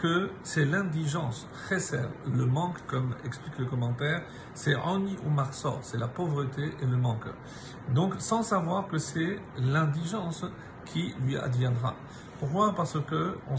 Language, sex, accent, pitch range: French, male, French, 130-165 Hz